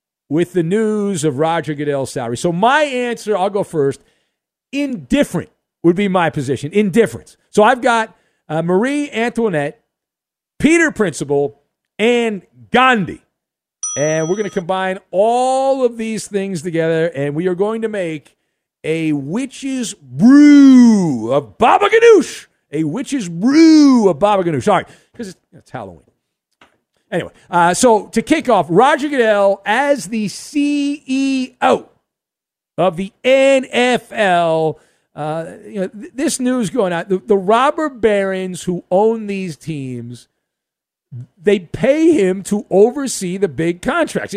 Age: 50-69